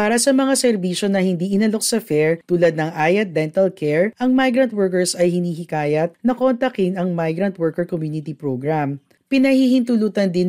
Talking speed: 160 wpm